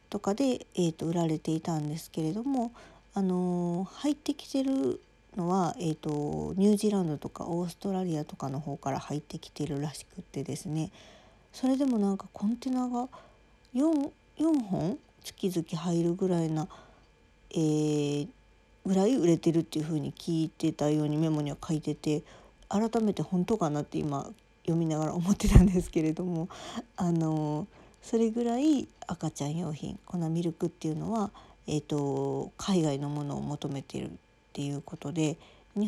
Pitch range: 150-200 Hz